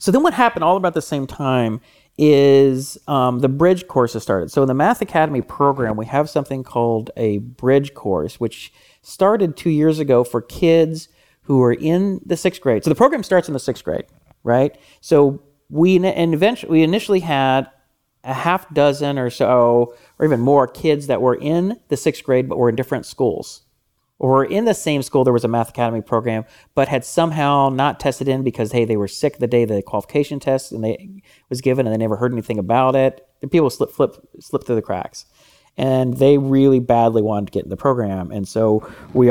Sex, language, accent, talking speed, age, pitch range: male, English, American, 205 wpm, 40-59, 120-150 Hz